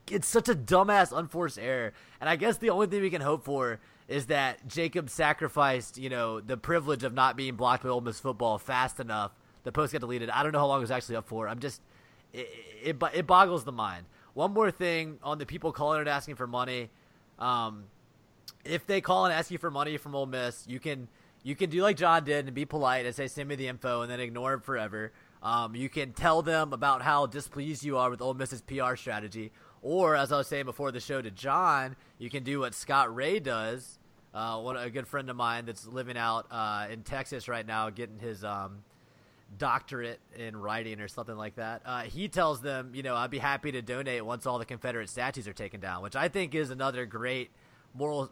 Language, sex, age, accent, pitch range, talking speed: English, male, 30-49, American, 115-150 Hz, 230 wpm